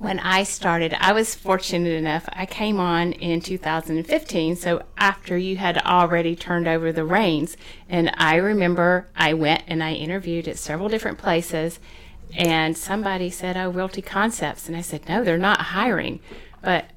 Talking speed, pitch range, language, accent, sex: 165 wpm, 165-200 Hz, English, American, female